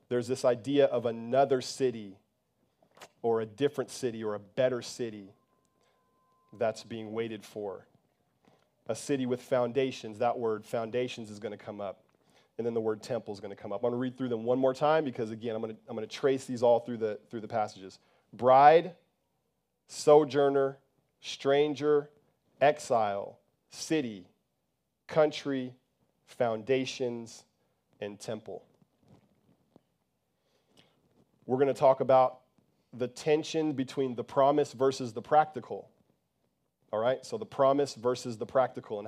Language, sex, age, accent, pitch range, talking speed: English, male, 40-59, American, 115-135 Hz, 140 wpm